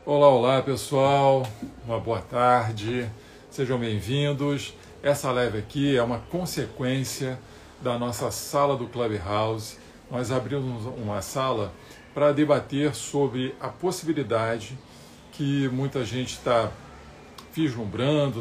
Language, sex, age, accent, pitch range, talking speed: Portuguese, male, 50-69, Brazilian, 115-145 Hz, 110 wpm